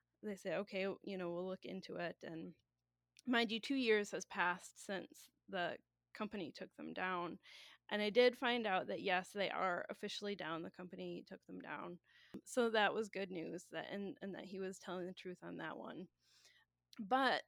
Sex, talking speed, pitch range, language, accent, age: female, 190 wpm, 180-245 Hz, English, American, 20-39